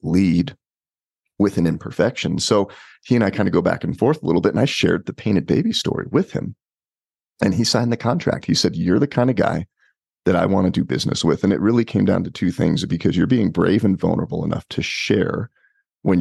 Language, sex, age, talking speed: English, male, 40-59, 235 wpm